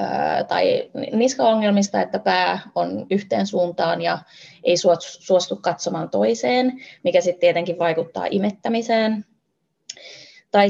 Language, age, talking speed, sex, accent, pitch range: Finnish, 20-39, 100 wpm, female, native, 175-215 Hz